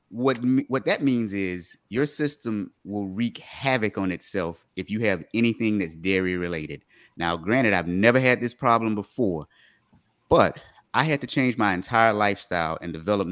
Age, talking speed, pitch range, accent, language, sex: 30-49, 165 wpm, 95-125 Hz, American, English, male